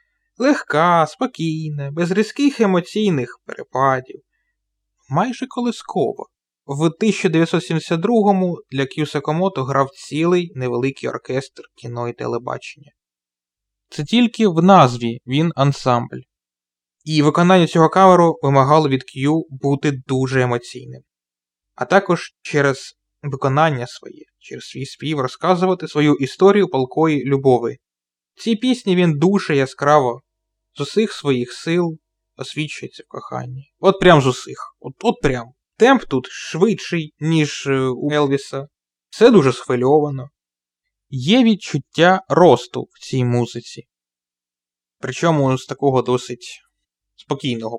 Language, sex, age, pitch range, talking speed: Ukrainian, male, 20-39, 125-170 Hz, 110 wpm